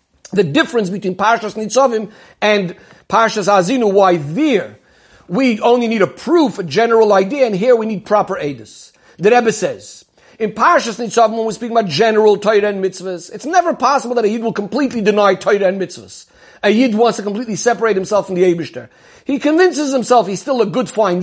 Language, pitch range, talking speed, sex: English, 190-245 Hz, 190 wpm, male